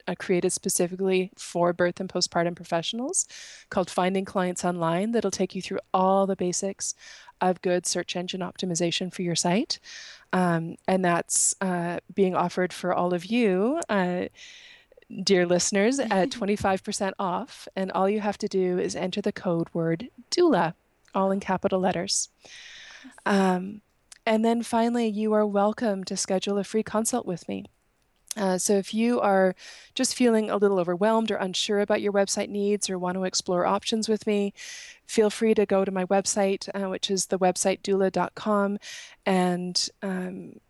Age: 20-39